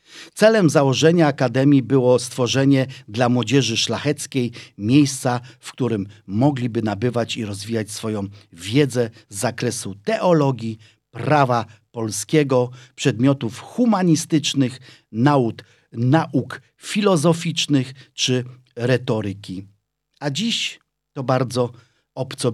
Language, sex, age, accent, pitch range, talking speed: German, male, 50-69, Polish, 110-150 Hz, 90 wpm